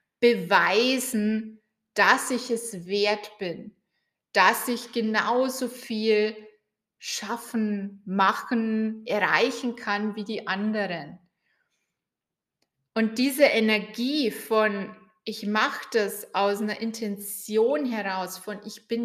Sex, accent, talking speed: female, German, 100 wpm